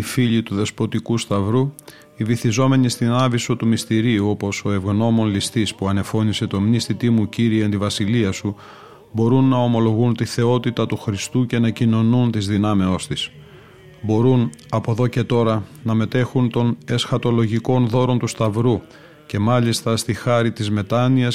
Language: Greek